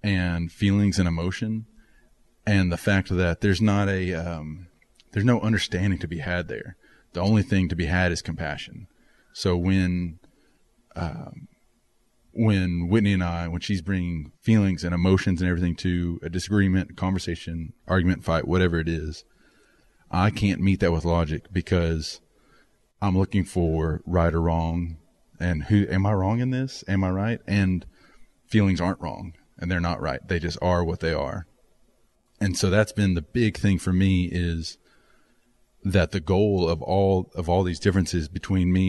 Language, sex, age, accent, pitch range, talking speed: English, male, 30-49, American, 85-100 Hz, 170 wpm